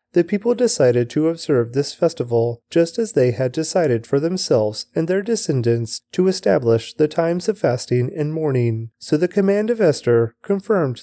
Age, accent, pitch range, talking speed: 30-49, American, 125-185 Hz, 170 wpm